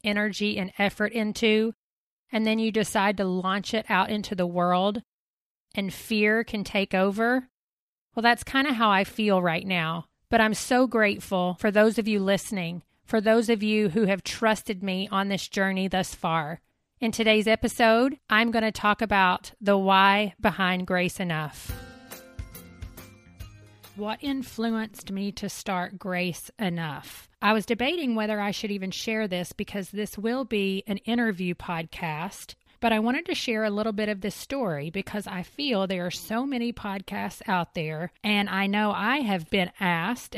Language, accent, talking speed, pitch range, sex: English, American, 170 wpm, 185-225 Hz, female